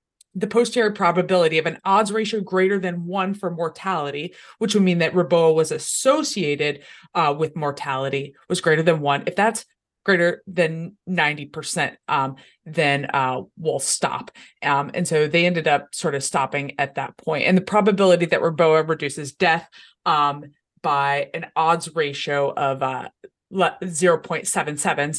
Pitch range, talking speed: 145-190 Hz, 150 wpm